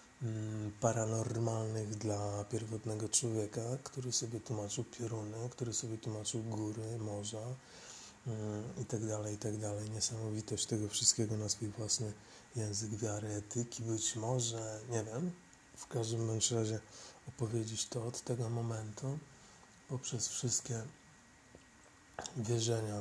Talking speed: 110 wpm